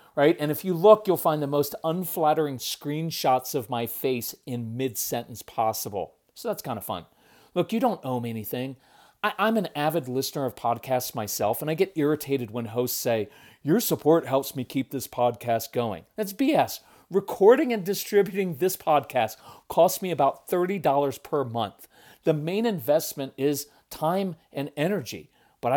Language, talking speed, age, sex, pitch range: English, 165 wpm, 40-59, male, 125-180 Hz